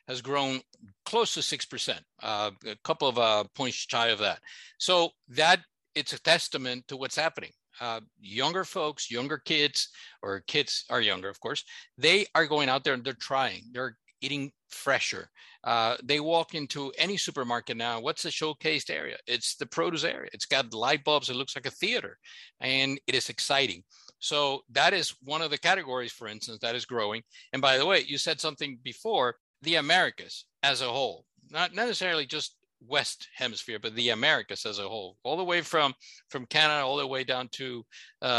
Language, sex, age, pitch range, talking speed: English, male, 50-69, 120-155 Hz, 185 wpm